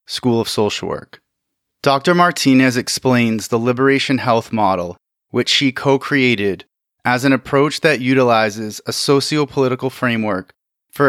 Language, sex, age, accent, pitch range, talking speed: English, male, 30-49, American, 115-135 Hz, 130 wpm